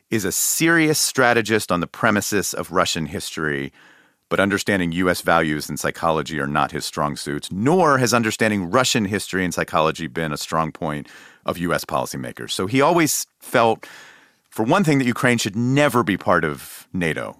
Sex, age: male, 40-59